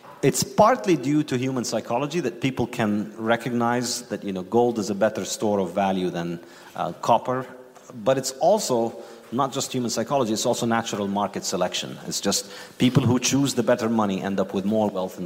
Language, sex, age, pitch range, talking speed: English, male, 40-59, 105-135 Hz, 195 wpm